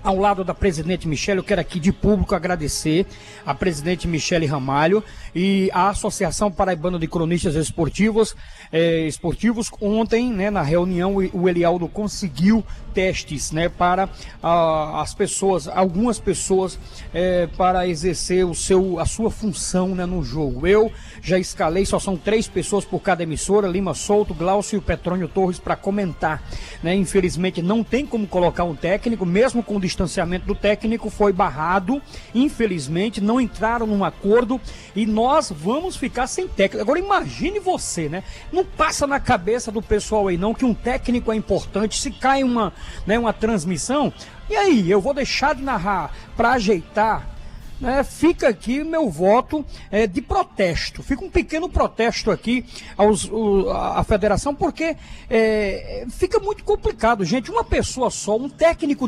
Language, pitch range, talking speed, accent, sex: Portuguese, 185-245 Hz, 150 wpm, Brazilian, male